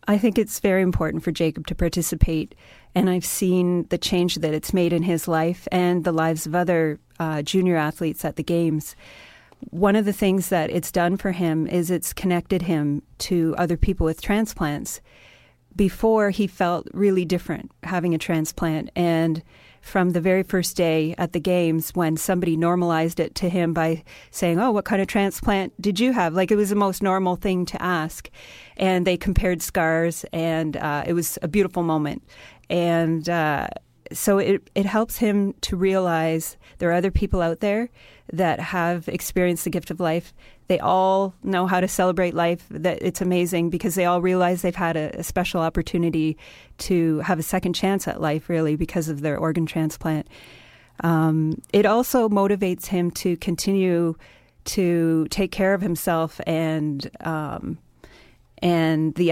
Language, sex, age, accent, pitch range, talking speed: English, female, 40-59, American, 160-190 Hz, 175 wpm